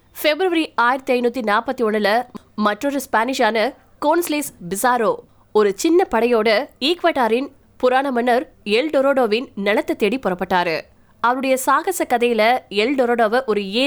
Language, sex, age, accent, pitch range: Tamil, female, 20-39, native, 205-255 Hz